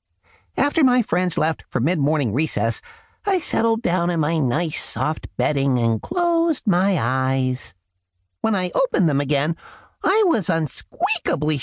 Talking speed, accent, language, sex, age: 140 wpm, American, English, male, 50-69